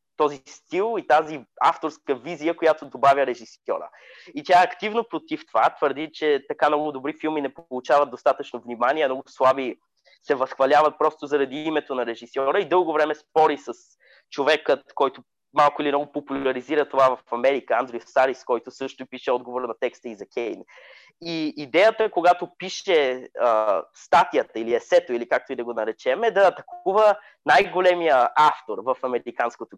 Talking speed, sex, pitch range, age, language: 160 wpm, male, 135-175 Hz, 20-39, Bulgarian